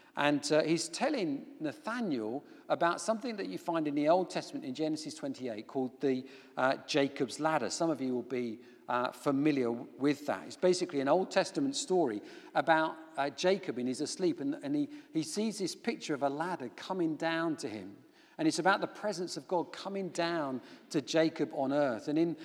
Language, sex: English, male